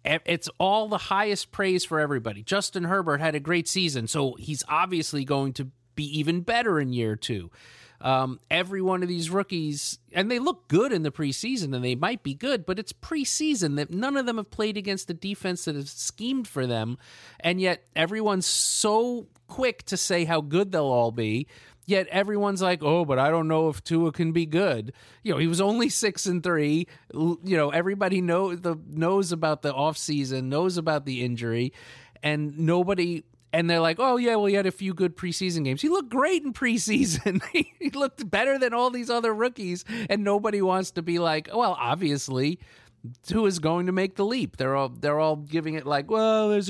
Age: 30-49